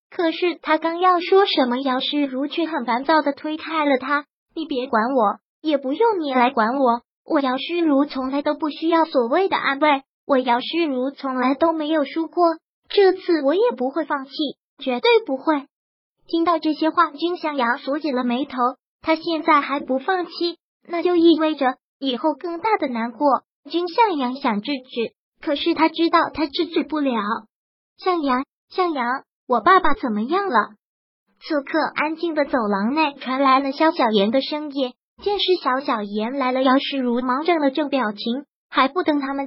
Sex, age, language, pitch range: male, 20-39, Chinese, 260-325 Hz